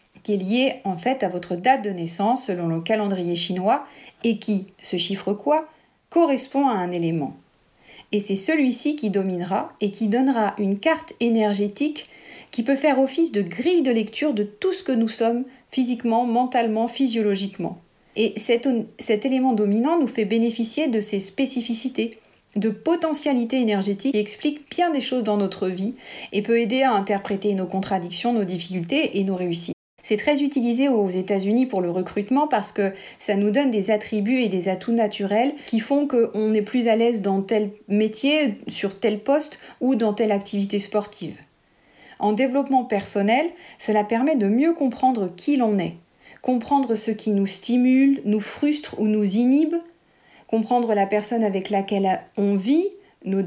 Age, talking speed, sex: 40-59, 170 wpm, female